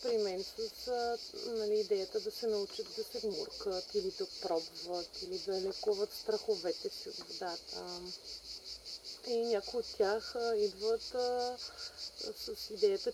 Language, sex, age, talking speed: Bulgarian, female, 30-49, 140 wpm